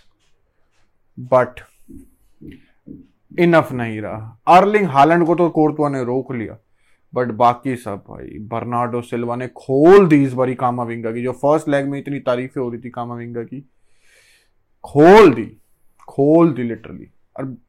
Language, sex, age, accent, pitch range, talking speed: Hindi, male, 20-39, native, 120-145 Hz, 145 wpm